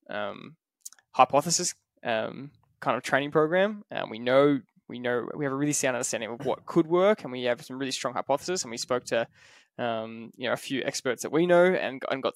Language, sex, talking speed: English, male, 220 wpm